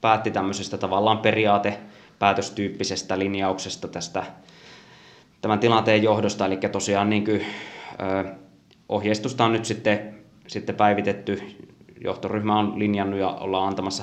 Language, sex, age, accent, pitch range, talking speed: Finnish, male, 20-39, native, 95-105 Hz, 95 wpm